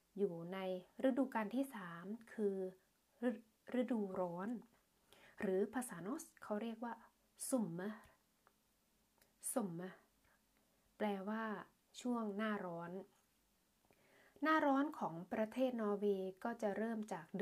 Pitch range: 190-225 Hz